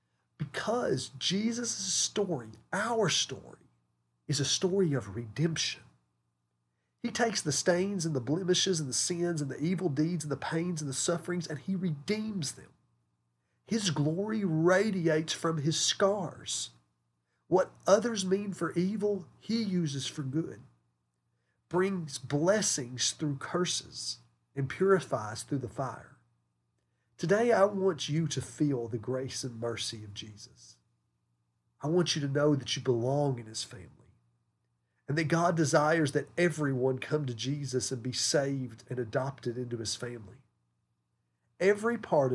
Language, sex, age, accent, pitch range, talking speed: English, male, 40-59, American, 105-170 Hz, 140 wpm